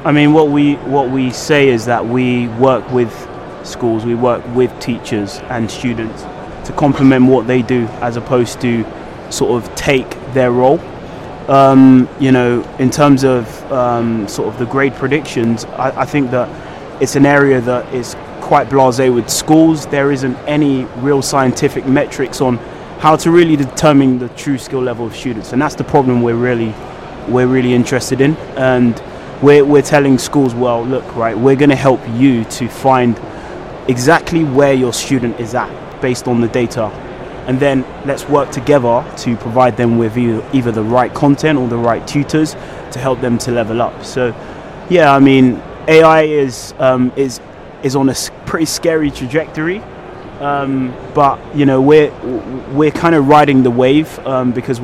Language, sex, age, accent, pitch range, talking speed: English, male, 20-39, British, 120-140 Hz, 175 wpm